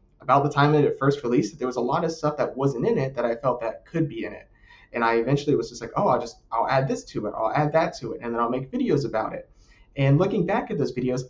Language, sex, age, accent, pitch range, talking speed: English, male, 20-39, American, 120-155 Hz, 305 wpm